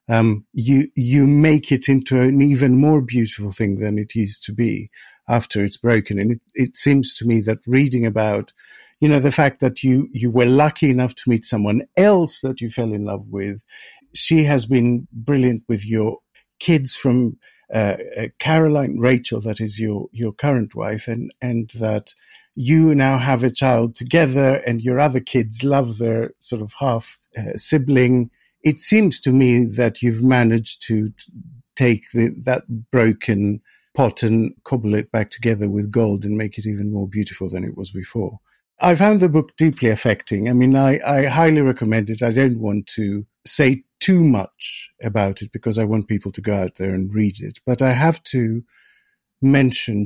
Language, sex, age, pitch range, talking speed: English, male, 50-69, 110-135 Hz, 185 wpm